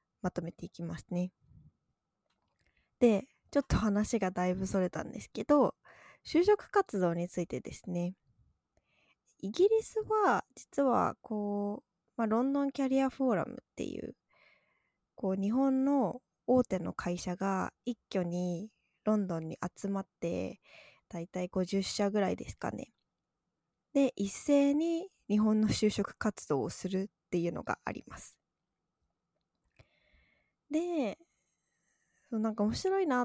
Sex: female